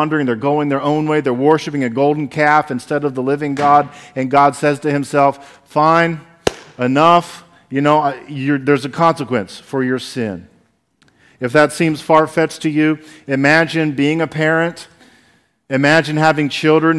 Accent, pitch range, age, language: American, 140-170 Hz, 40-59, English